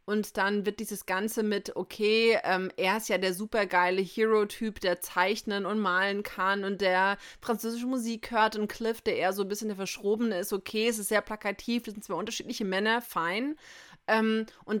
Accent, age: German, 30-49